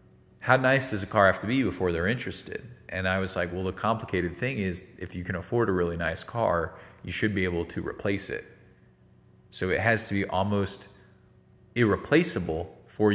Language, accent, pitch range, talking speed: English, American, 90-115 Hz, 195 wpm